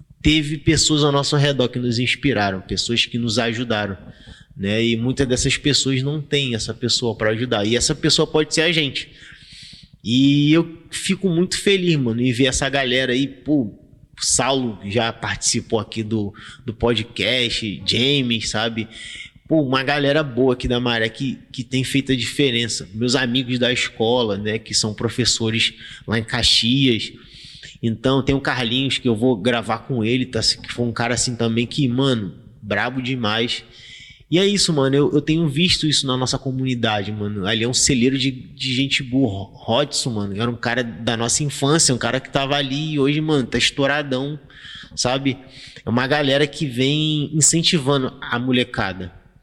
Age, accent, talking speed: 20-39, Brazilian, 175 wpm